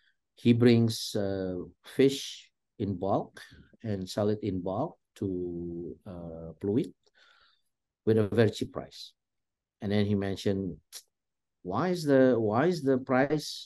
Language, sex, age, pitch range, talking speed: English, male, 50-69, 95-120 Hz, 130 wpm